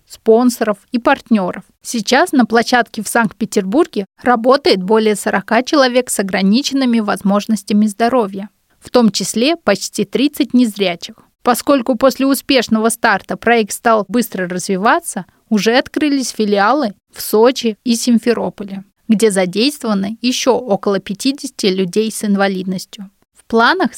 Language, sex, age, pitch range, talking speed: Russian, female, 20-39, 205-250 Hz, 115 wpm